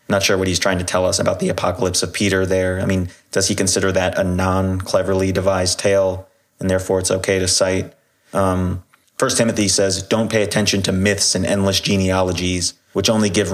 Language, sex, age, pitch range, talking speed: English, male, 30-49, 95-105 Hz, 200 wpm